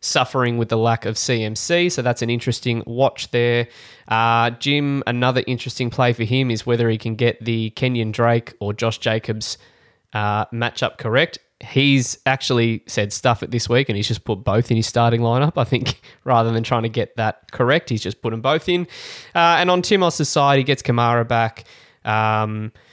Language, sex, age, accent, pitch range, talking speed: English, male, 20-39, Australian, 115-130 Hz, 195 wpm